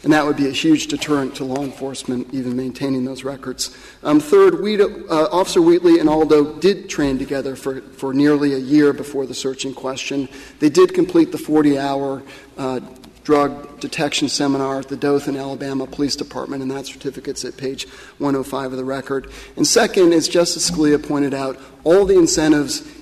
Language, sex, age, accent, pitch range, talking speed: English, male, 40-59, American, 135-150 Hz, 180 wpm